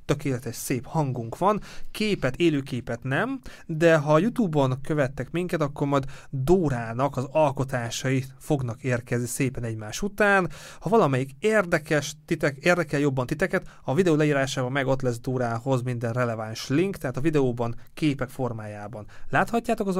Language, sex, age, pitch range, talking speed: Hungarian, male, 30-49, 125-165 Hz, 140 wpm